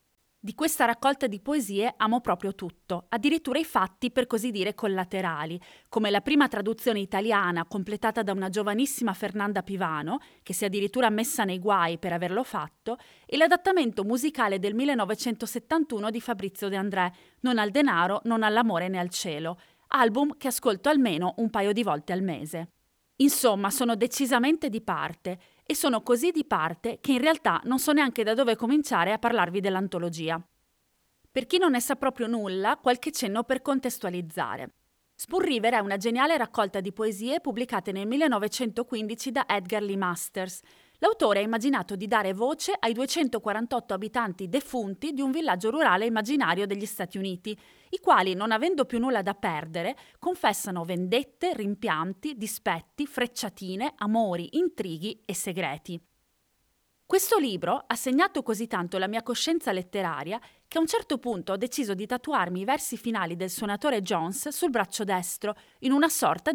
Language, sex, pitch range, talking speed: Italian, female, 195-260 Hz, 160 wpm